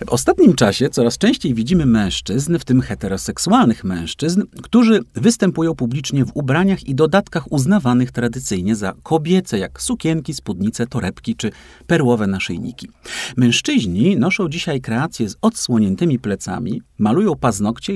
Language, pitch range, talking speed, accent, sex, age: Polish, 120-170 Hz, 125 wpm, native, male, 40-59